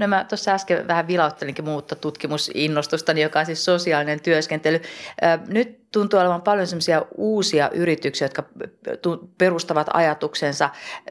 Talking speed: 120 wpm